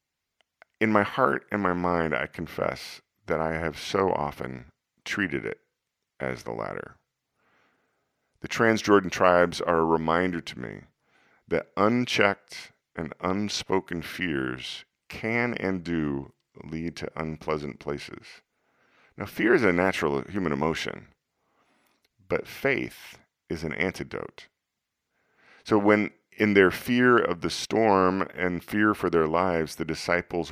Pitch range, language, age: 75-95 Hz, English, 40-59